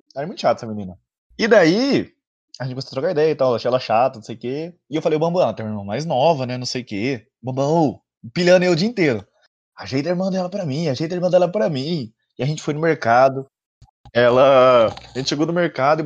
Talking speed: 260 wpm